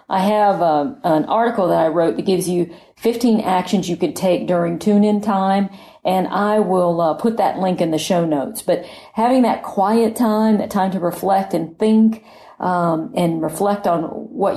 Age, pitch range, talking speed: 40-59, 170-205 Hz, 190 wpm